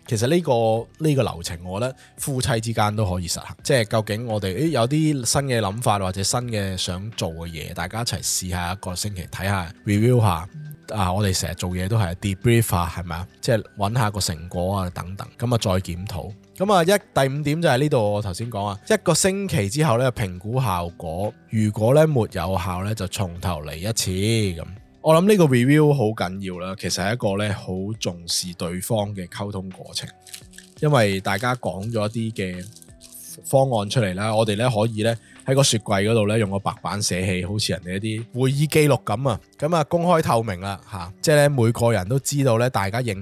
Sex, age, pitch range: male, 20-39, 95-125 Hz